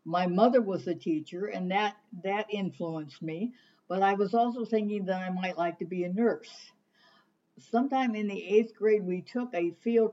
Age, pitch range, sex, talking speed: 60-79, 175-220 Hz, female, 190 wpm